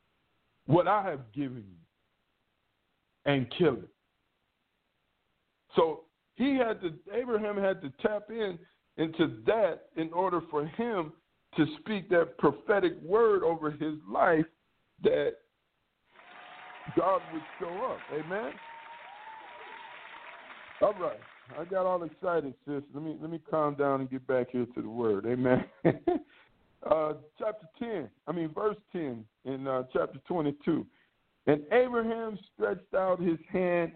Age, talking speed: 50-69, 135 wpm